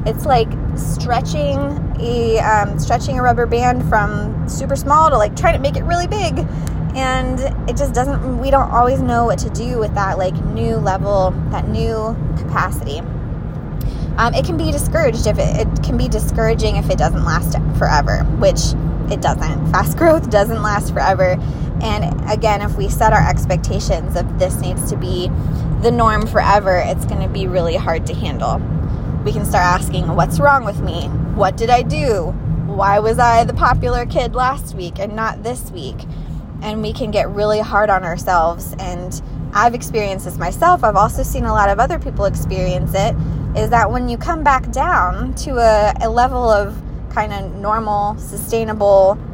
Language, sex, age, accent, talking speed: English, female, 20-39, American, 180 wpm